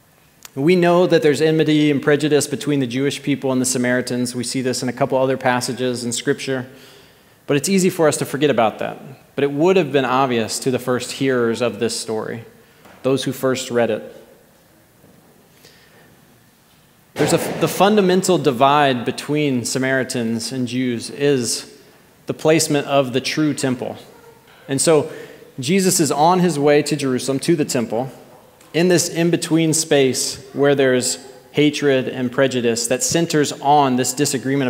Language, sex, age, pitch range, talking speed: English, male, 20-39, 125-155 Hz, 160 wpm